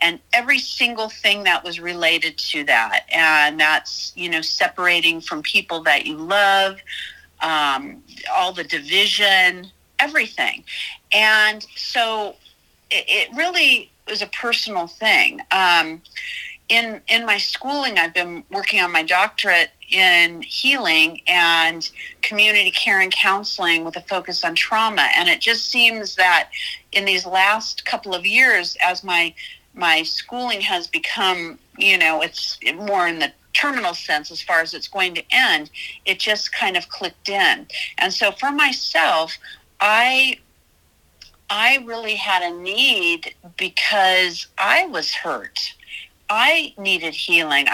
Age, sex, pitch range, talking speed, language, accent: 40-59, female, 175-230 Hz, 140 wpm, English, American